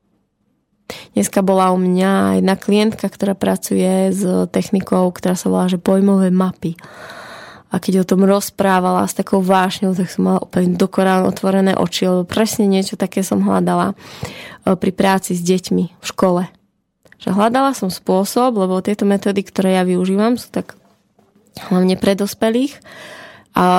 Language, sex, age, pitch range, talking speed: Slovak, female, 20-39, 180-200 Hz, 150 wpm